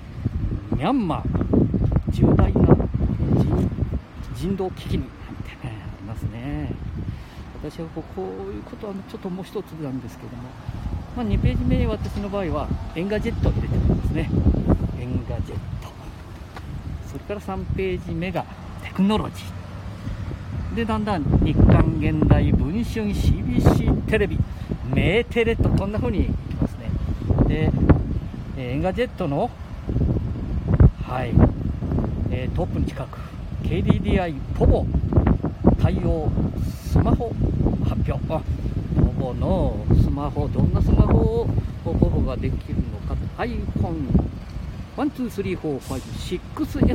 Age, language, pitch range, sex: 50-69, Japanese, 95-135 Hz, male